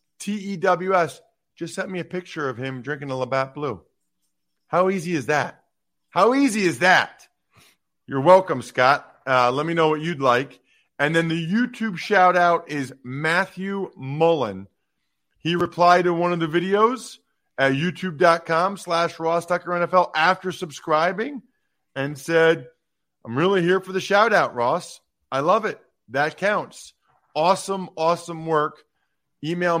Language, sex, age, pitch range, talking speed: English, male, 40-59, 130-180 Hz, 155 wpm